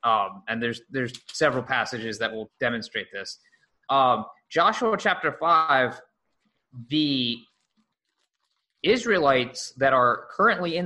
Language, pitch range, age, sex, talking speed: English, 120-165 Hz, 20-39, male, 110 wpm